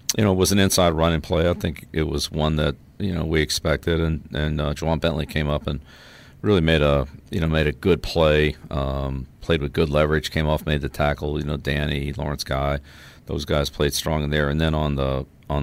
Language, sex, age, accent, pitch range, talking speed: English, male, 50-69, American, 70-80 Hz, 235 wpm